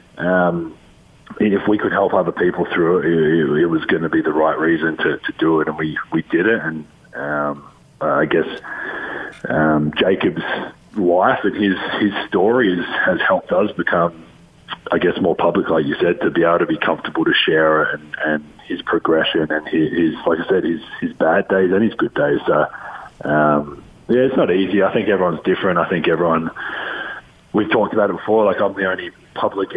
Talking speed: 205 wpm